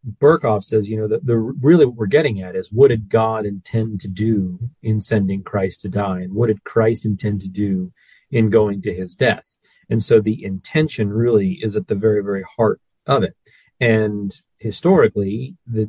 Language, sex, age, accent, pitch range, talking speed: English, male, 30-49, American, 100-120 Hz, 195 wpm